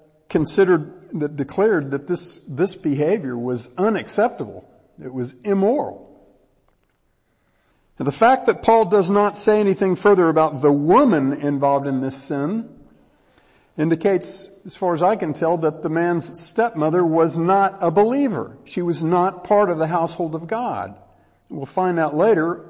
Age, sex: 50-69, male